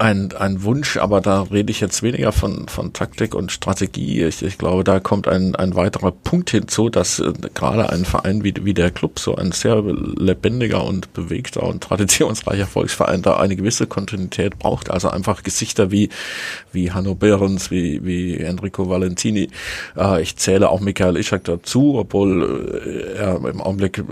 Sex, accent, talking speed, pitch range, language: male, German, 175 wpm, 90-105 Hz, German